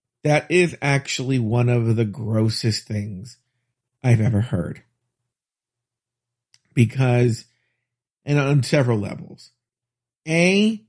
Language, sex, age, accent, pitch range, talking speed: English, male, 50-69, American, 120-140 Hz, 95 wpm